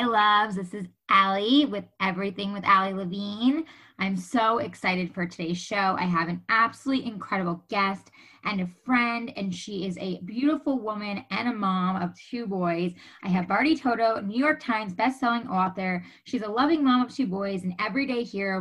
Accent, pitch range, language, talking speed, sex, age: American, 185-235 Hz, English, 180 wpm, female, 20-39